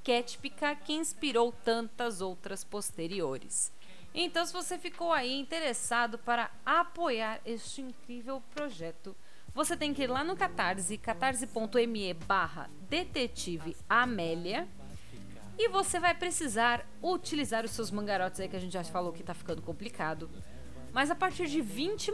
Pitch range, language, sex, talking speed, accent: 215-320 Hz, Portuguese, female, 135 wpm, Brazilian